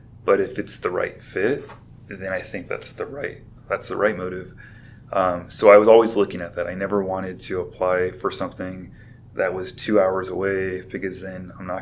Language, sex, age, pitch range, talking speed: English, male, 20-39, 95-115 Hz, 205 wpm